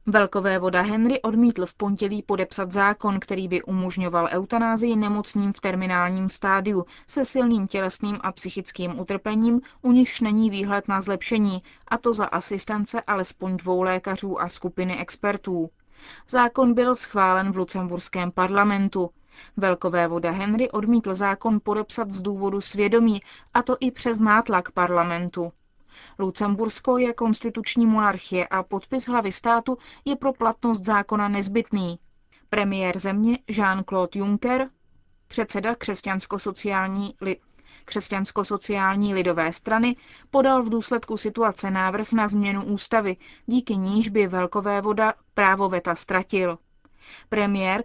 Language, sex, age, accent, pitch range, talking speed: Czech, female, 20-39, native, 190-225 Hz, 120 wpm